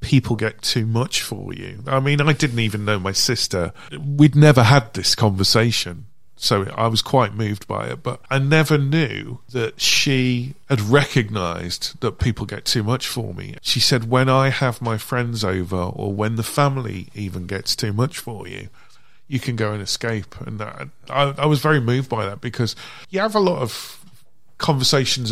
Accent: British